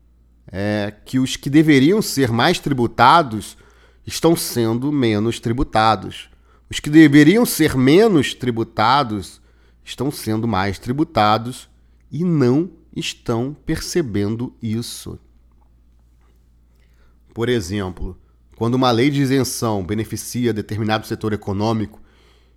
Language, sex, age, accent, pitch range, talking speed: Portuguese, male, 40-59, Brazilian, 90-140 Hz, 100 wpm